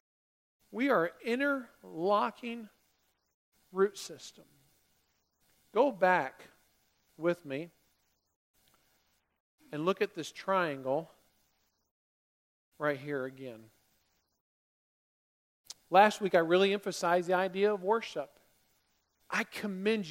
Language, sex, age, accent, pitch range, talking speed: English, male, 50-69, American, 130-195 Hz, 85 wpm